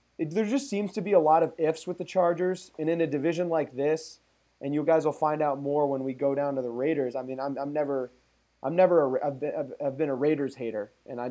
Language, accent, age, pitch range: English, American, 20-39, 130-165 Hz